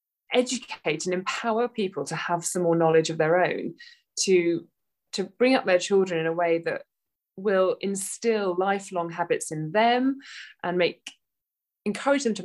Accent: British